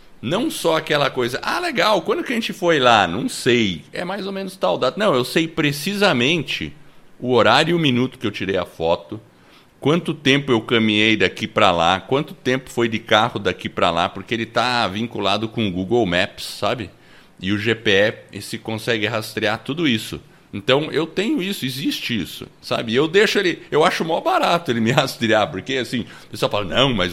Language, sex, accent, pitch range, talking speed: Portuguese, male, Brazilian, 110-150 Hz, 200 wpm